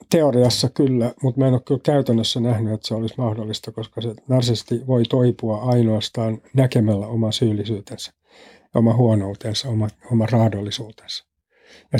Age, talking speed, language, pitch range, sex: 60-79, 140 wpm, Finnish, 110-130 Hz, male